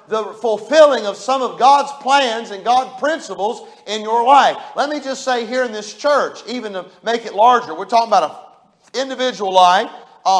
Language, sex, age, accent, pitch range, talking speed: English, male, 40-59, American, 210-285 Hz, 190 wpm